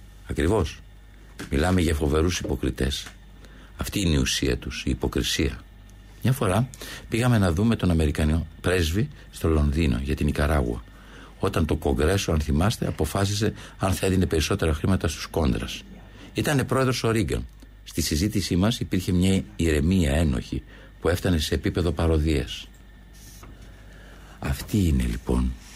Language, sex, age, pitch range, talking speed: Greek, male, 60-79, 75-100 Hz, 135 wpm